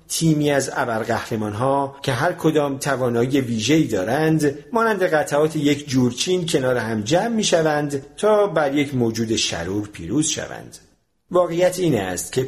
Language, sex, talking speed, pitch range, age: Persian, male, 135 wpm, 110-165 Hz, 50-69